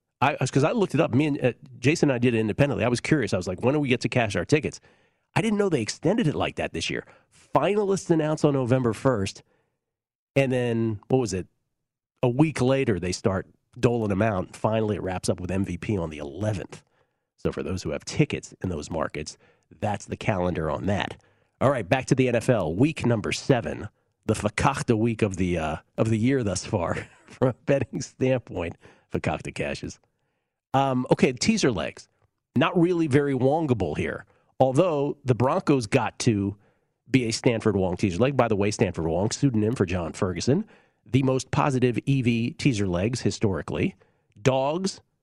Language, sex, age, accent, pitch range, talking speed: English, male, 40-59, American, 105-135 Hz, 190 wpm